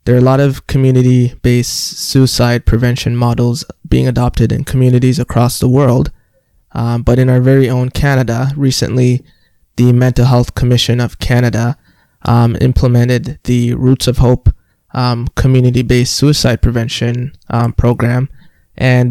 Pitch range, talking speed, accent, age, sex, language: 120-130 Hz, 135 wpm, American, 20-39, male, English